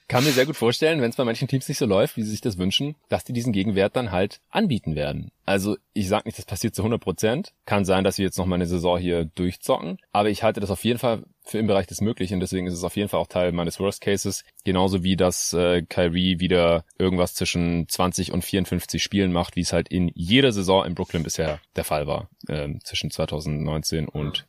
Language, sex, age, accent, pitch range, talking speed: German, male, 30-49, German, 85-110 Hz, 240 wpm